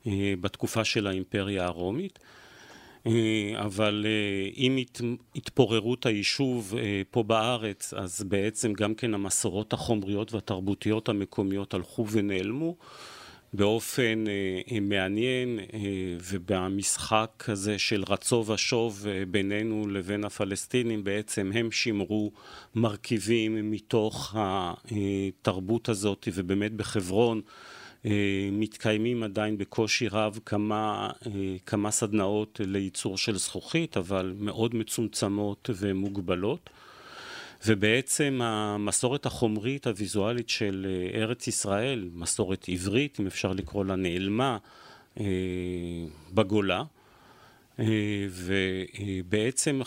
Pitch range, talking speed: 100-120 Hz, 85 wpm